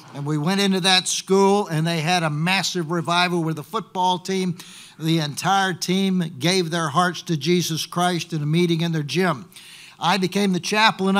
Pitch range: 170-200 Hz